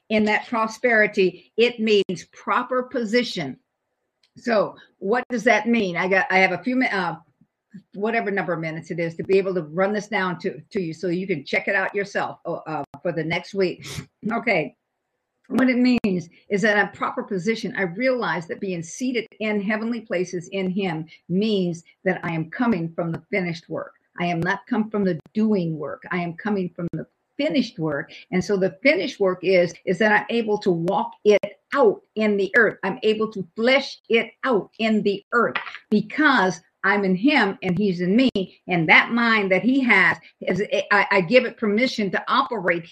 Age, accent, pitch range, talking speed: 50-69, American, 185-230 Hz, 195 wpm